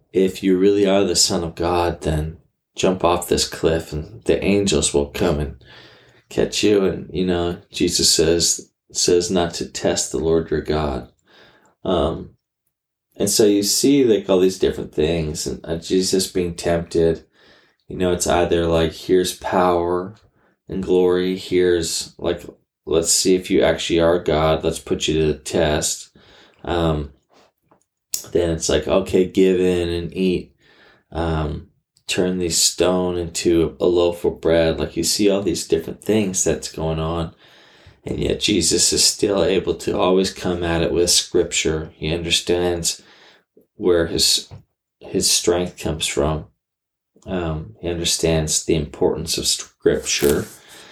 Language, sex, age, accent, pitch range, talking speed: English, male, 20-39, American, 80-95 Hz, 150 wpm